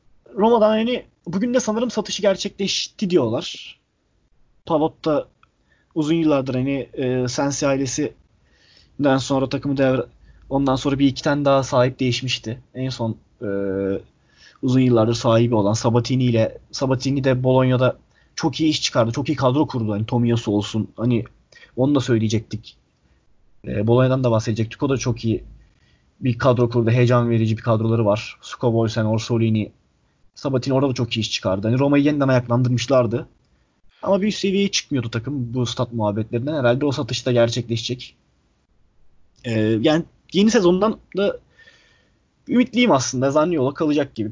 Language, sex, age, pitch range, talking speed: Turkish, male, 30-49, 115-150 Hz, 145 wpm